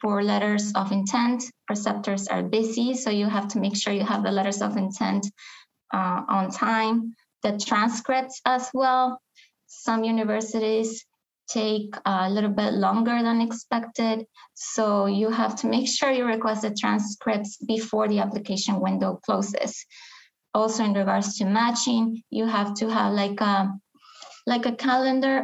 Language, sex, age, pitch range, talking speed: English, female, 20-39, 205-235 Hz, 150 wpm